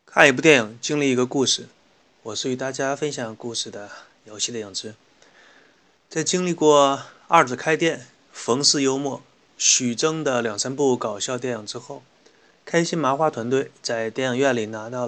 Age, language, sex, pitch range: 20-39, Chinese, male, 120-150 Hz